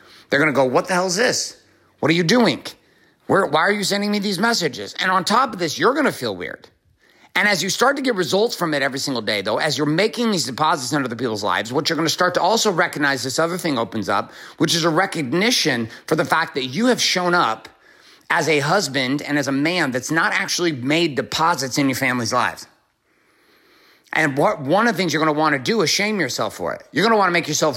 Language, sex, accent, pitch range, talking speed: English, male, American, 145-200 Hz, 250 wpm